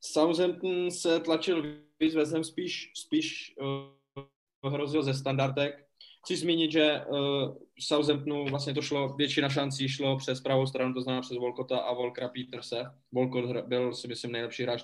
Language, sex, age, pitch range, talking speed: Czech, male, 20-39, 120-145 Hz, 160 wpm